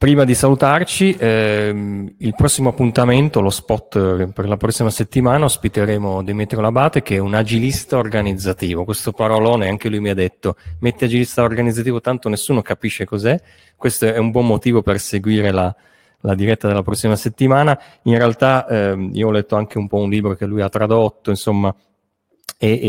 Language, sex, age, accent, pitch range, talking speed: Italian, male, 30-49, native, 100-115 Hz, 170 wpm